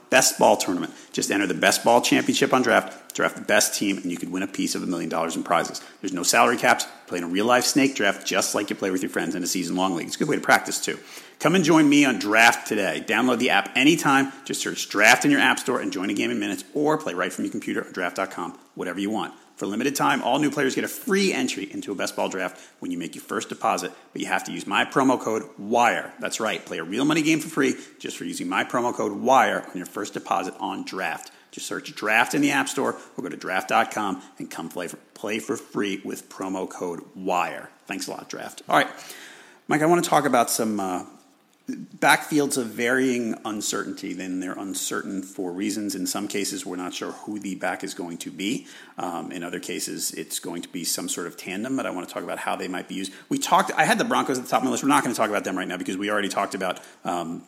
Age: 40-59